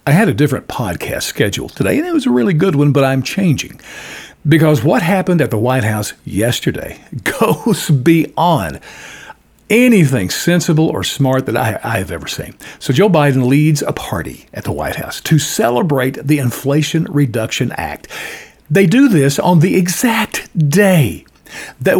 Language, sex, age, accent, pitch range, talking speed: English, male, 50-69, American, 140-180 Hz, 165 wpm